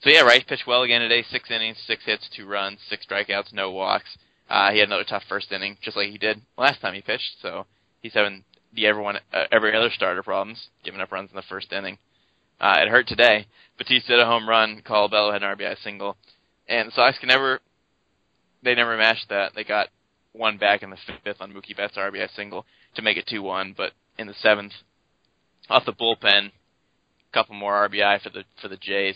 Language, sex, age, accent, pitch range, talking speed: English, male, 20-39, American, 95-110 Hz, 215 wpm